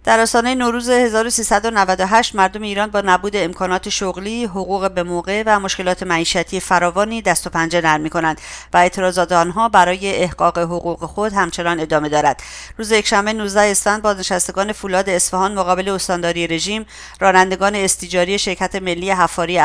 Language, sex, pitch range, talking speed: English, female, 180-205 Hz, 145 wpm